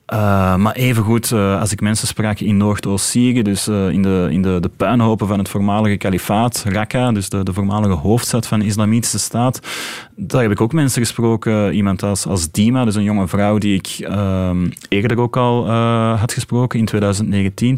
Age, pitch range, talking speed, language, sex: 30-49, 100-120 Hz, 195 wpm, Dutch, male